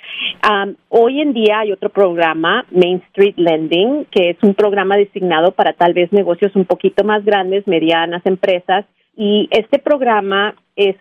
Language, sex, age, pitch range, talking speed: Spanish, female, 40-59, 185-215 Hz, 155 wpm